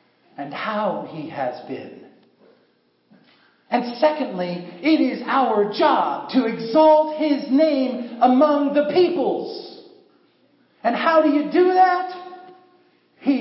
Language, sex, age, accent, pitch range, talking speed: English, male, 40-59, American, 225-305 Hz, 110 wpm